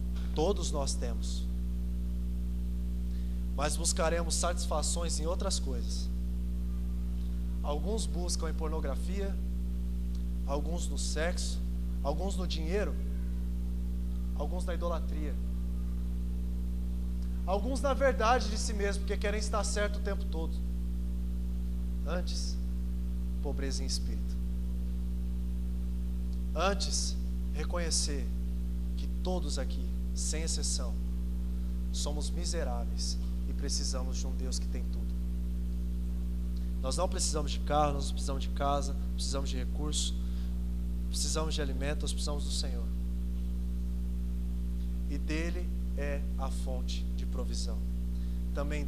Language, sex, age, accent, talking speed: Portuguese, male, 20-39, Brazilian, 100 wpm